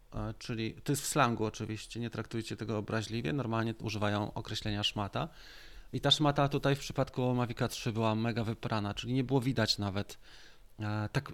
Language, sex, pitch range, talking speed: Polish, male, 110-140 Hz, 165 wpm